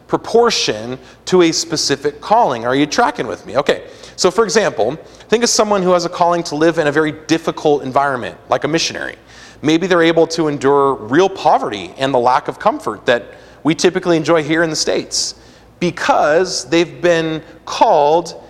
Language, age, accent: English, 30-49, American